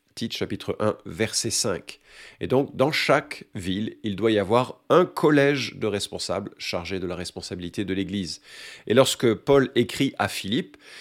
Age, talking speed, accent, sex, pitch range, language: 40-59, 160 wpm, French, male, 100-130 Hz, French